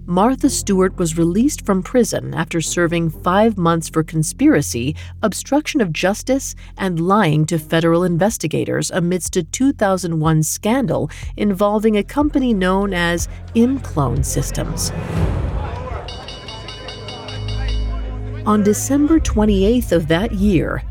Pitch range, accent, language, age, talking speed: 155-220 Hz, American, English, 40-59, 105 wpm